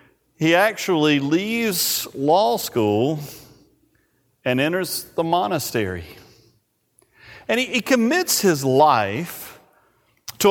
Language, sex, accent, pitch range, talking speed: English, male, American, 135-205 Hz, 90 wpm